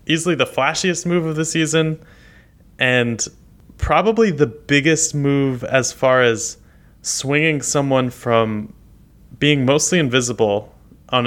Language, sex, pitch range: English, male, 115-145 Hz